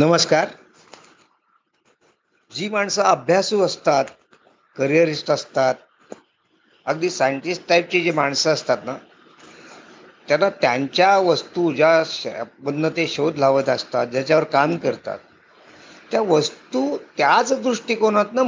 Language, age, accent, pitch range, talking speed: Marathi, 50-69, native, 155-185 Hz, 95 wpm